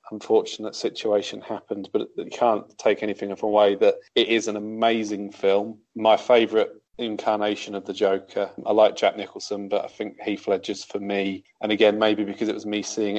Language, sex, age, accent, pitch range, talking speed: English, male, 30-49, British, 100-115 Hz, 180 wpm